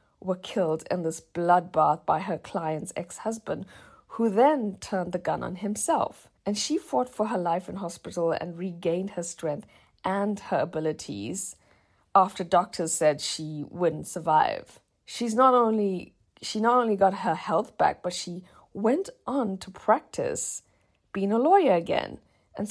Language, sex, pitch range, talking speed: English, female, 165-205 Hz, 155 wpm